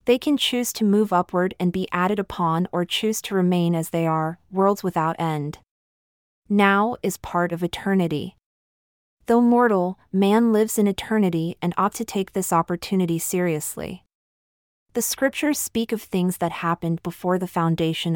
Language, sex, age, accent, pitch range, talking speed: English, female, 30-49, American, 170-210 Hz, 160 wpm